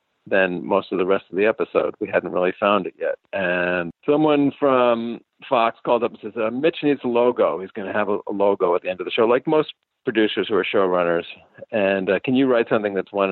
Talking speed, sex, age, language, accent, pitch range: 245 wpm, male, 50-69, English, American, 90-135 Hz